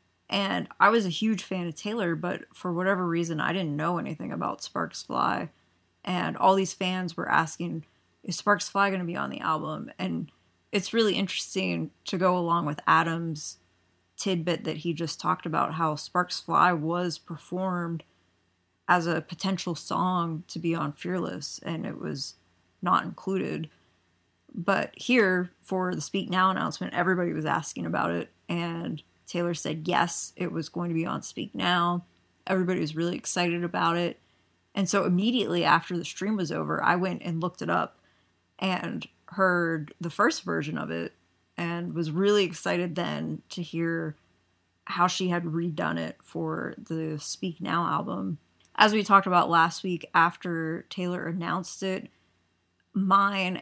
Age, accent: 20-39, American